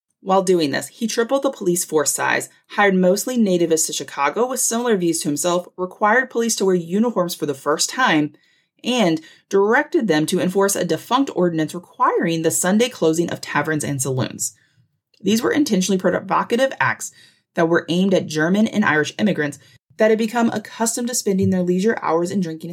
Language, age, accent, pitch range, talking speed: English, 30-49, American, 155-210 Hz, 180 wpm